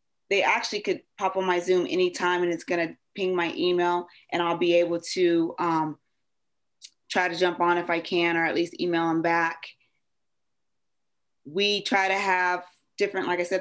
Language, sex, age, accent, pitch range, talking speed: English, female, 20-39, American, 170-190 Hz, 180 wpm